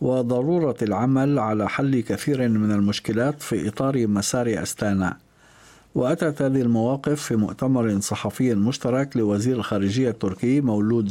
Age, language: 50-69, Arabic